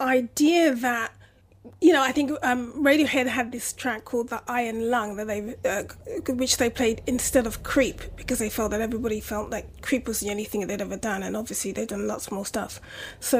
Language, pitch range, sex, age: English, 230-275 Hz, female, 30-49